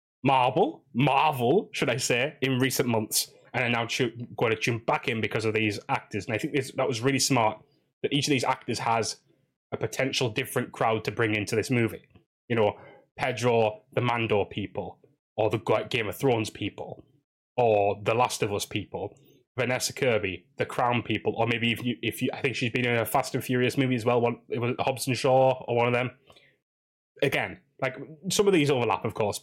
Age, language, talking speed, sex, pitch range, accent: 10-29, English, 210 wpm, male, 115-135 Hz, British